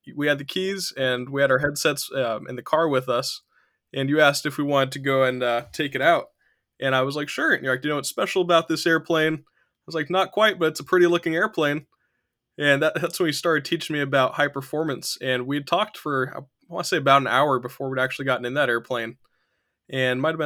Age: 20-39